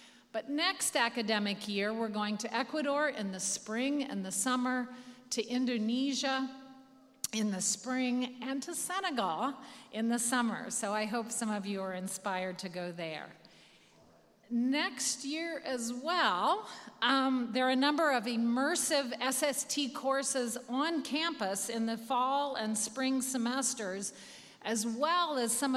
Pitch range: 220-265 Hz